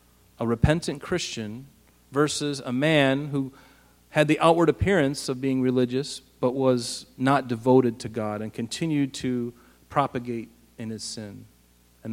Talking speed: 140 wpm